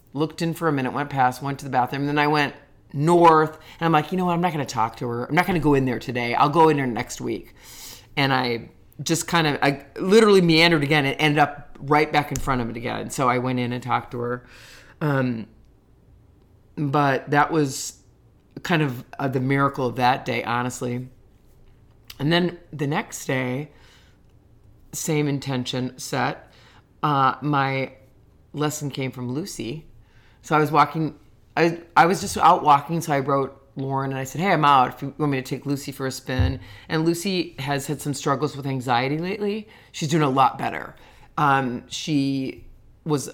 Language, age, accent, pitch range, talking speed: English, 30-49, American, 125-155 Hz, 195 wpm